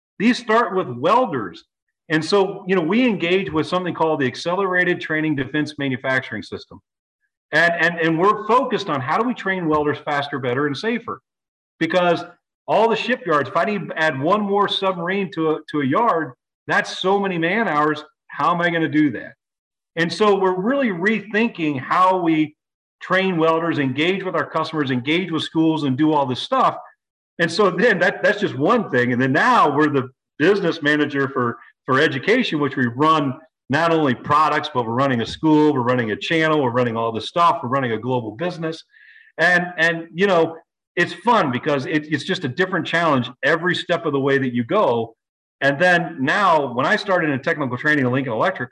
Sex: male